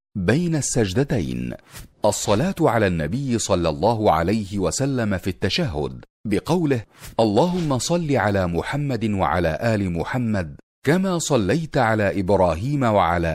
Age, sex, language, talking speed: 40-59, male, Arabic, 110 wpm